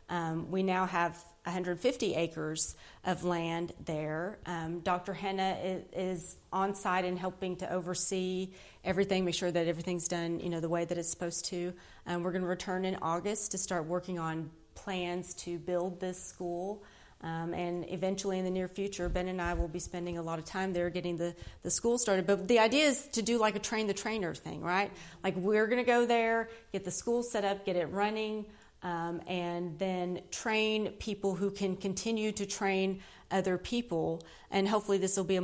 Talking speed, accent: 195 wpm, American